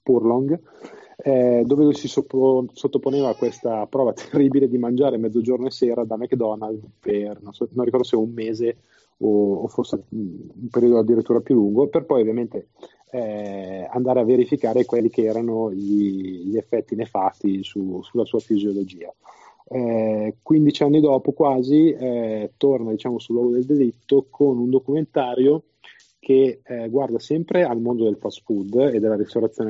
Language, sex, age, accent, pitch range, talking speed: Italian, male, 30-49, native, 110-135 Hz, 160 wpm